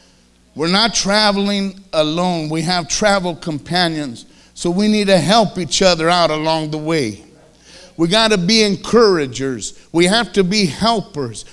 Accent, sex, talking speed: American, male, 150 wpm